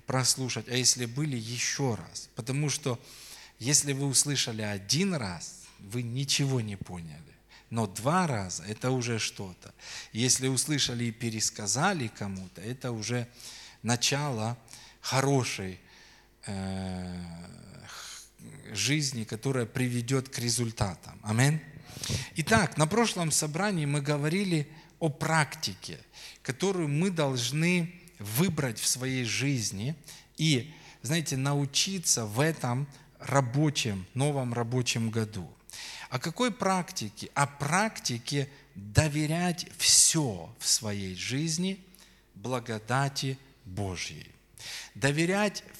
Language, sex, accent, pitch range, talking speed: Russian, male, native, 115-150 Hz, 95 wpm